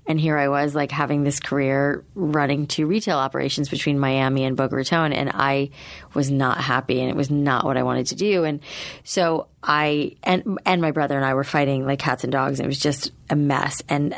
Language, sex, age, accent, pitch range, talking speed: English, female, 30-49, American, 140-165 Hz, 225 wpm